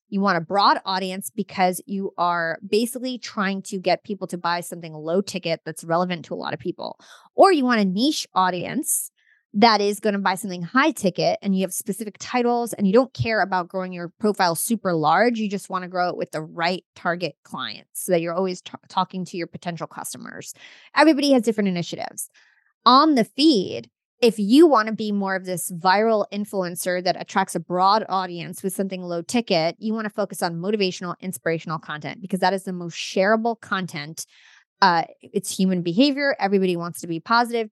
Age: 20-39